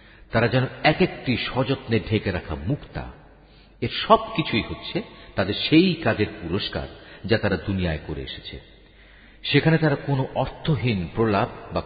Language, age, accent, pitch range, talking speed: Bengali, 50-69, native, 90-125 Hz, 135 wpm